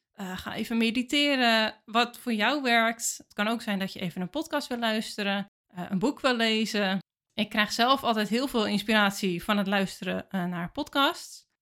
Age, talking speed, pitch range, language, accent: 20-39, 190 wpm, 195-235 Hz, Dutch, Dutch